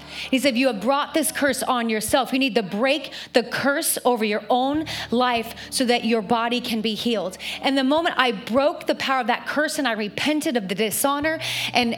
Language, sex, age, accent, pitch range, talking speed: English, female, 30-49, American, 220-310 Hz, 220 wpm